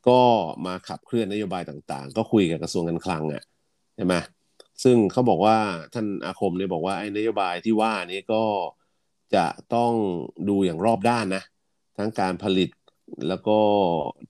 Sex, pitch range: male, 85-110 Hz